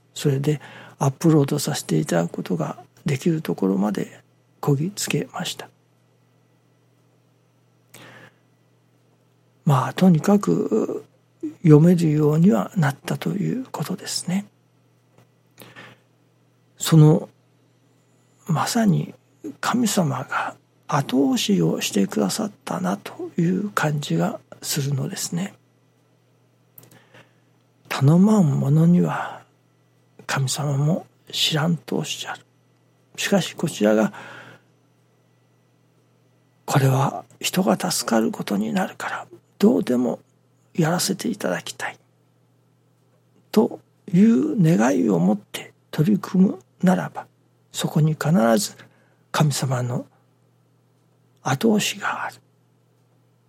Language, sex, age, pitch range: Japanese, male, 60-79, 140-190 Hz